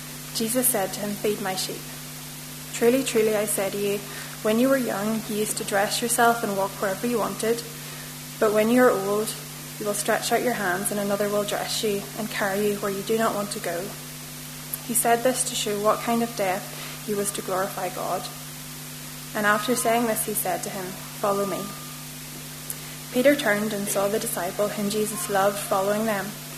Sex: female